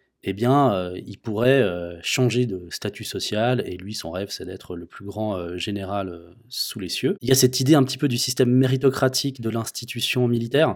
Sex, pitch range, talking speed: male, 100-125 Hz, 220 wpm